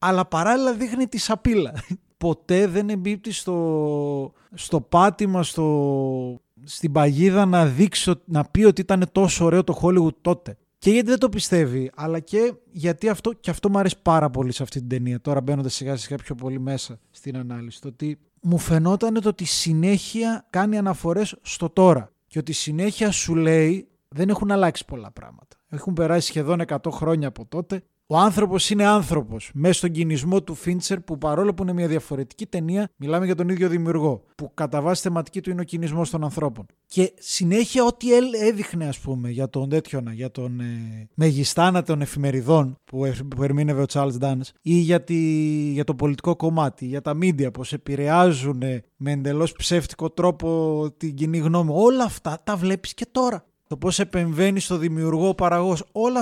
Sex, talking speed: male, 180 wpm